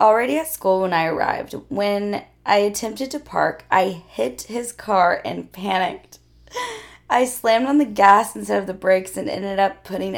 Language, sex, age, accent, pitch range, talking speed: English, female, 20-39, American, 175-215 Hz, 175 wpm